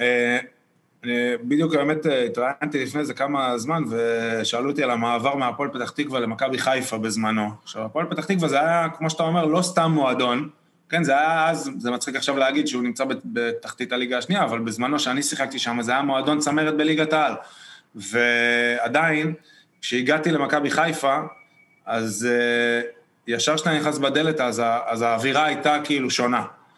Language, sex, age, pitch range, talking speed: Hebrew, male, 20-39, 135-170 Hz, 160 wpm